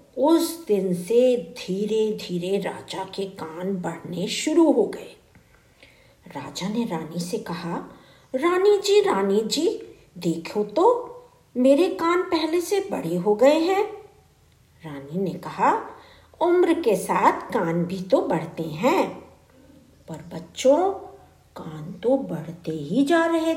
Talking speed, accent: 125 wpm, native